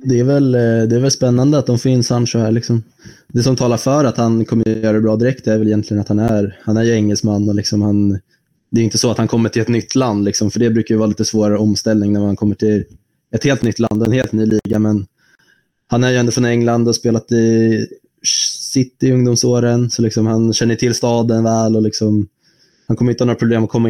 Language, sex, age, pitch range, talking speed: Swedish, male, 20-39, 105-120 Hz, 250 wpm